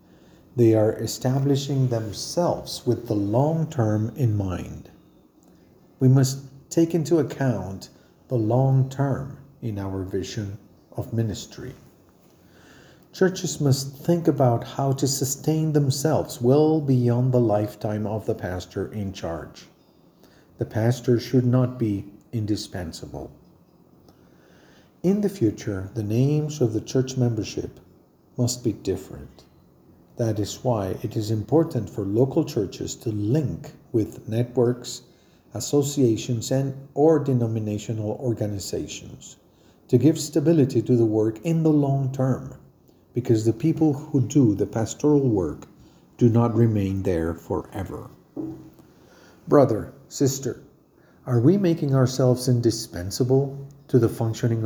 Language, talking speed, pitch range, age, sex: Spanish, 115 wpm, 110-140 Hz, 40-59, male